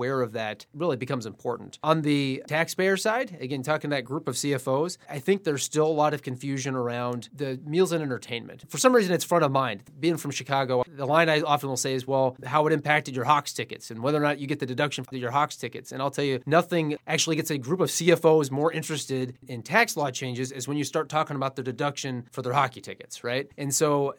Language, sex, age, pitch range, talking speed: English, male, 30-49, 130-155 Hz, 240 wpm